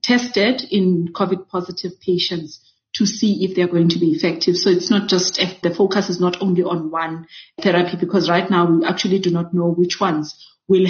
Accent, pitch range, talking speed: South African, 175-200 Hz, 200 wpm